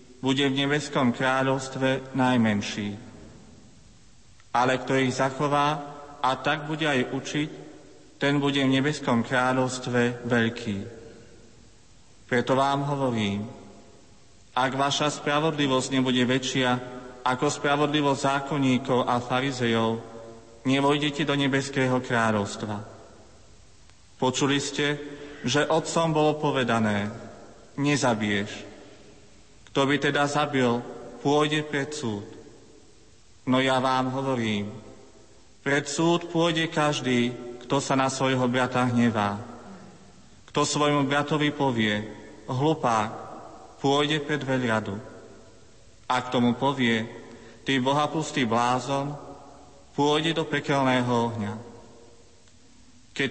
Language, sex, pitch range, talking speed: Slovak, male, 115-140 Hz, 95 wpm